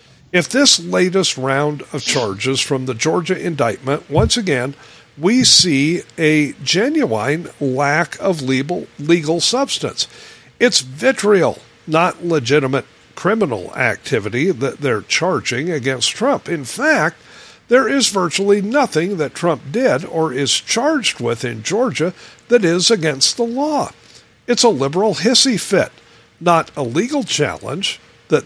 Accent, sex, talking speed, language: American, male, 130 wpm, English